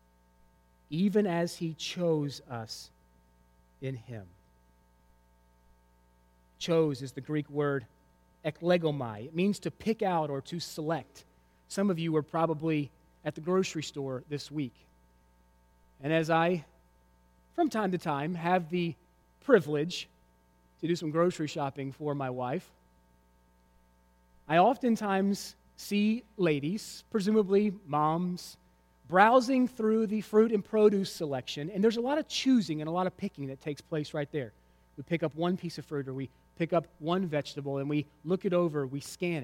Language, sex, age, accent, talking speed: English, male, 30-49, American, 150 wpm